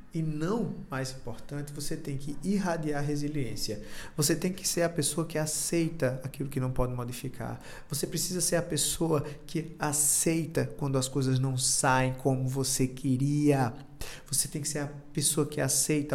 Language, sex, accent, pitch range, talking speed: Portuguese, male, Brazilian, 125-150 Hz, 170 wpm